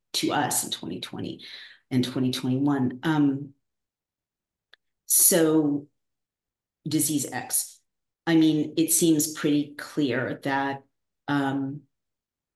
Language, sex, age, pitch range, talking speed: English, female, 40-59, 130-145 Hz, 85 wpm